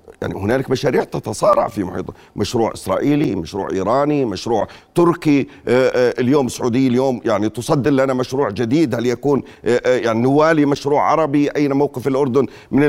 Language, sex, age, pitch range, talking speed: Arabic, male, 40-59, 115-155 Hz, 140 wpm